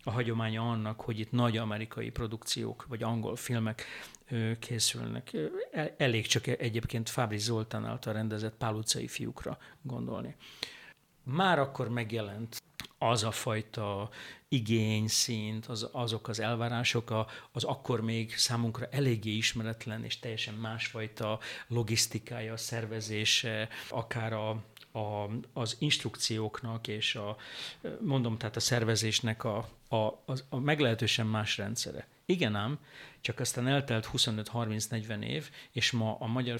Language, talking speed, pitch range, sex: Hungarian, 120 wpm, 110-130 Hz, male